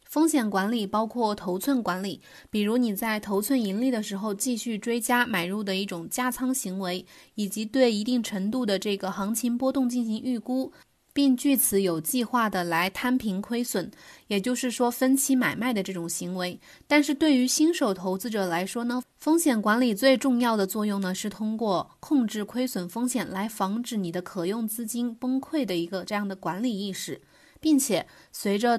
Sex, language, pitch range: female, Chinese, 195-250 Hz